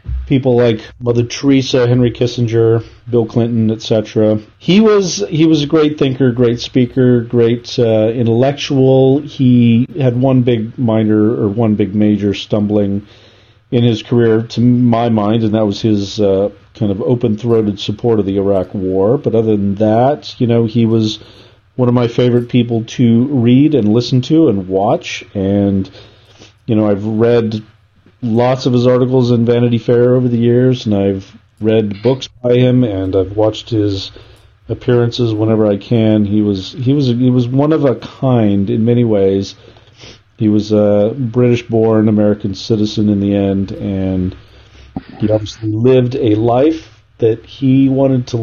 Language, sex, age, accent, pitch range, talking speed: English, male, 40-59, American, 105-125 Hz, 165 wpm